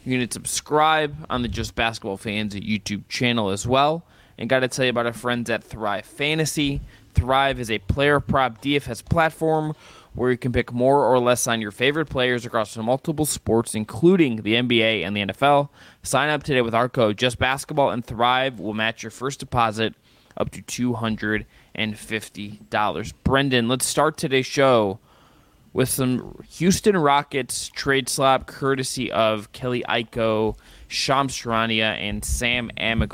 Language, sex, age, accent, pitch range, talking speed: English, male, 20-39, American, 110-135 Hz, 160 wpm